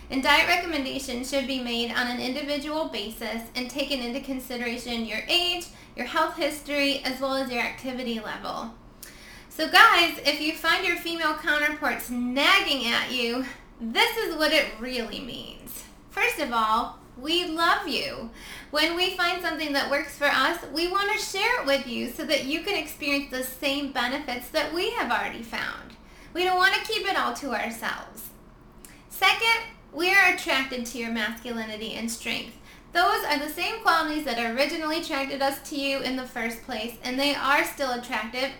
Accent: American